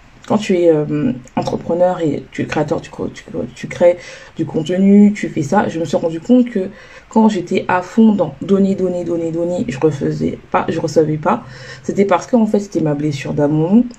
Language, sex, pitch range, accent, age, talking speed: French, female, 165-205 Hz, French, 20-39, 200 wpm